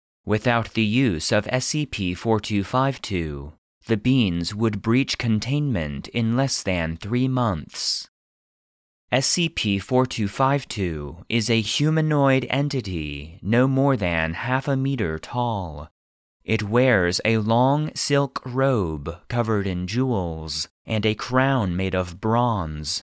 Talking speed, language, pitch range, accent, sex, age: 110 wpm, English, 85-130 Hz, American, male, 30-49